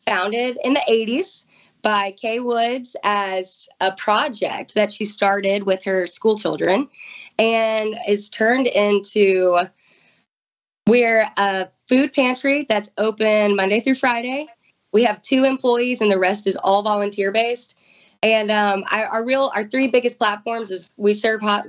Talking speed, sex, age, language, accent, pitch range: 145 wpm, female, 20-39, English, American, 190-230 Hz